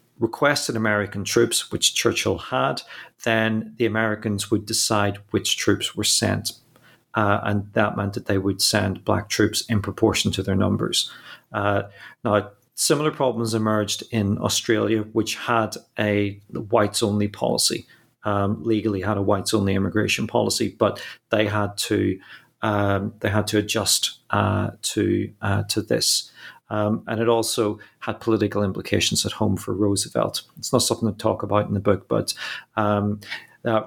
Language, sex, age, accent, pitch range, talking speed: English, male, 40-59, British, 100-115 Hz, 155 wpm